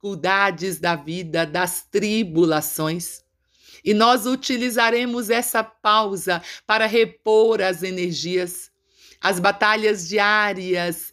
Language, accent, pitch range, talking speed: Portuguese, Brazilian, 180-215 Hz, 90 wpm